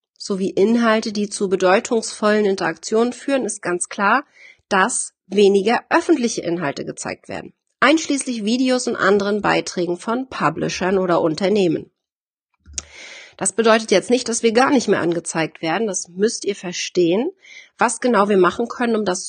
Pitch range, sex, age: 190-240 Hz, female, 30-49